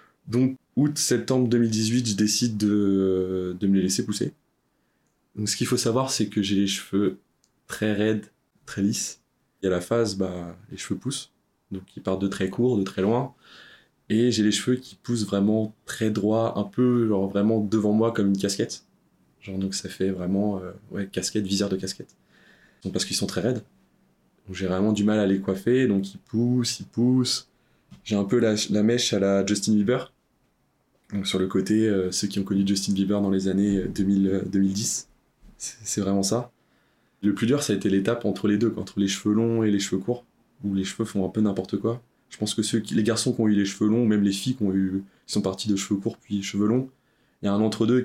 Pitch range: 100-115 Hz